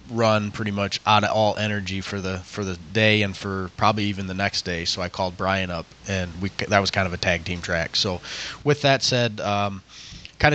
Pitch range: 95-110 Hz